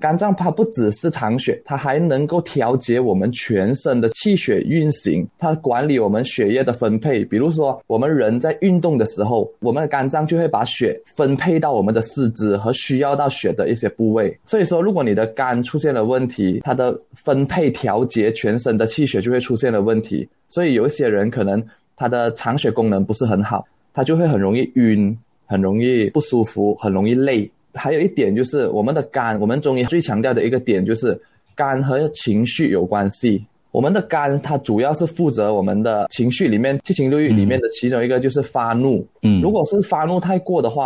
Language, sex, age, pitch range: Chinese, male, 20-39, 110-150 Hz